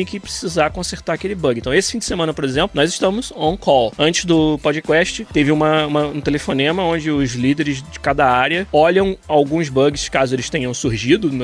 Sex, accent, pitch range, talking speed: male, Brazilian, 145-190 Hz, 185 wpm